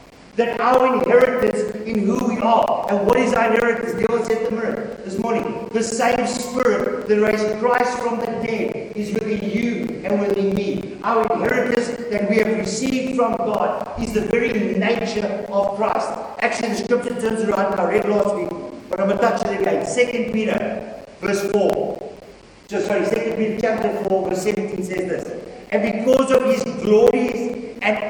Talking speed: 175 wpm